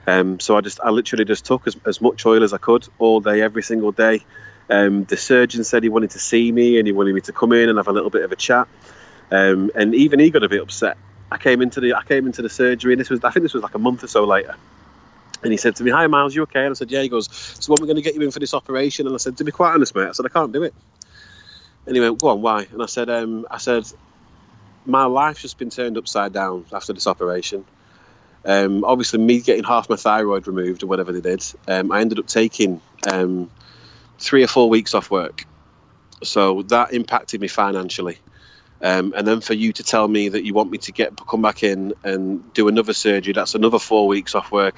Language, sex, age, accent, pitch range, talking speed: English, male, 30-49, British, 100-125 Hz, 255 wpm